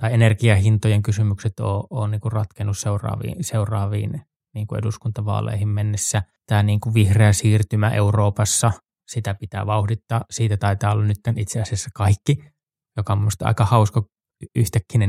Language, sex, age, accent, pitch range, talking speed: Finnish, male, 20-39, native, 105-130 Hz, 125 wpm